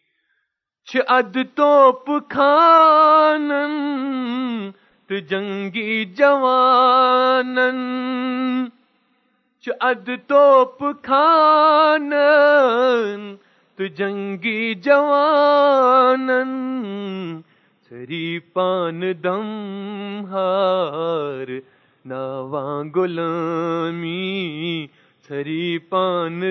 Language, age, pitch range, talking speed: Urdu, 30-49, 175-260 Hz, 45 wpm